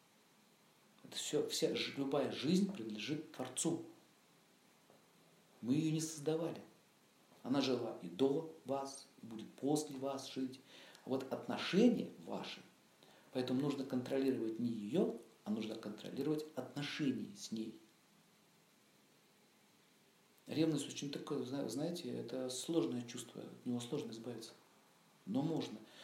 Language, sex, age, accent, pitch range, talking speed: Russian, male, 50-69, native, 120-155 Hz, 110 wpm